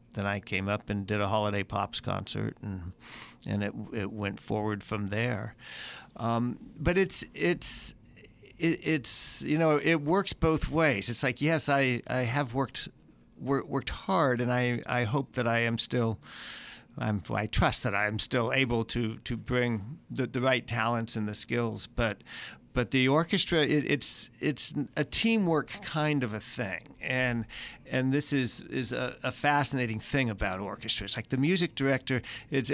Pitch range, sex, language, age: 110-135 Hz, male, English, 50-69